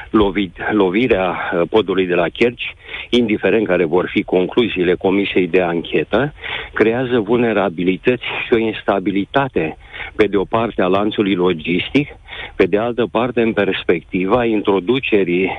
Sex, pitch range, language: male, 90-115 Hz, Romanian